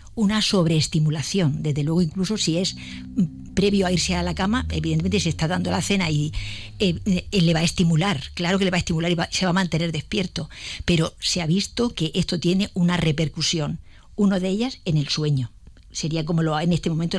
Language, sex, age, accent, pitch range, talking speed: Spanish, female, 50-69, Spanish, 155-190 Hz, 210 wpm